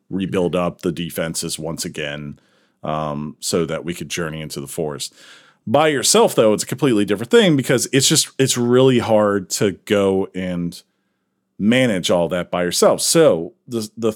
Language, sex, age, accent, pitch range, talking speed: English, male, 40-59, American, 95-120 Hz, 170 wpm